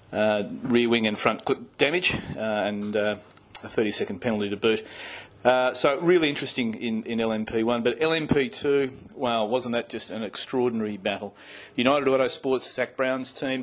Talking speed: 165 wpm